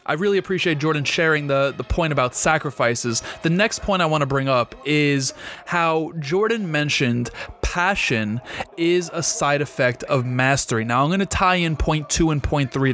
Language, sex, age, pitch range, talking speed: English, male, 20-39, 135-175 Hz, 185 wpm